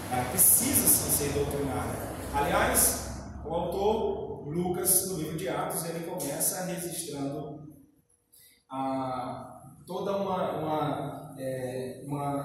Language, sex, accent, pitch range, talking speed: Portuguese, male, Brazilian, 140-175 Hz, 80 wpm